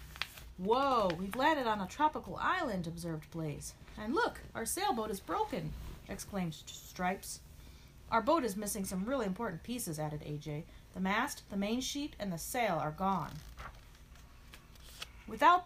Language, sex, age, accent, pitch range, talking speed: English, female, 30-49, American, 180-275 Hz, 145 wpm